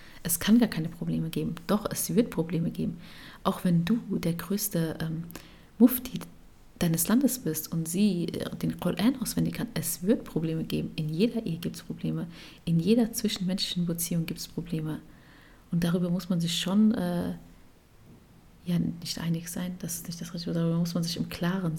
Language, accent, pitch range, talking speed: German, German, 165-195 Hz, 180 wpm